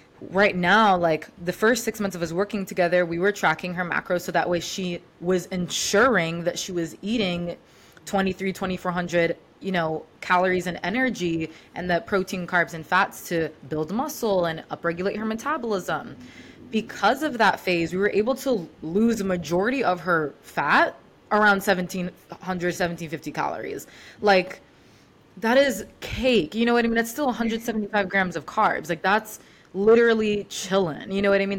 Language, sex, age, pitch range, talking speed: English, female, 20-39, 170-210 Hz, 165 wpm